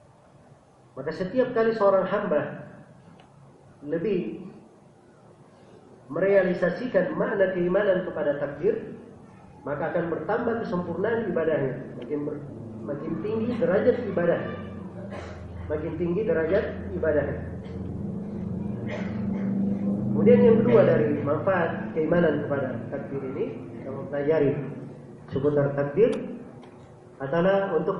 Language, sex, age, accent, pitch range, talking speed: Indonesian, male, 40-59, native, 145-195 Hz, 90 wpm